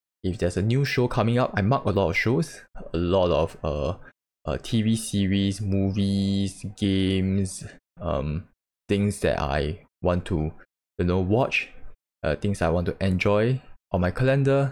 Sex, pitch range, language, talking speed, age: male, 85-105 Hz, English, 165 wpm, 20-39